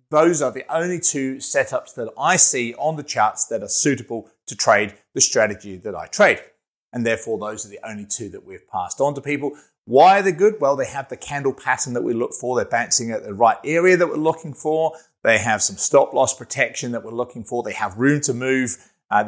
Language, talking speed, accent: English, 235 wpm, British